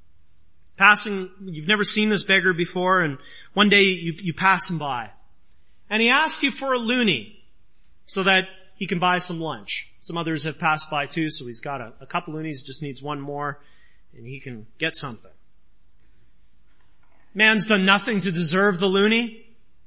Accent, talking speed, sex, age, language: American, 175 wpm, male, 30-49, English